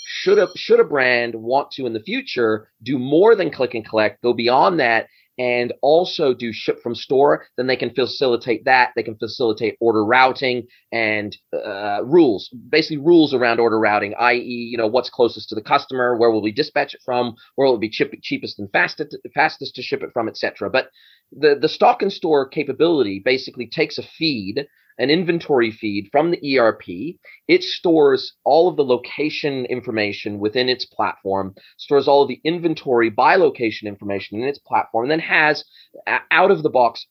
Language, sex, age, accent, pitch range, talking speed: English, male, 30-49, American, 110-145 Hz, 185 wpm